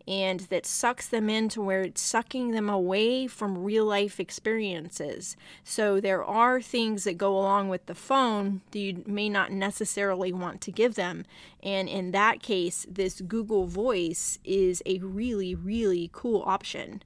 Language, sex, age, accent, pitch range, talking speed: English, female, 30-49, American, 185-215 Hz, 160 wpm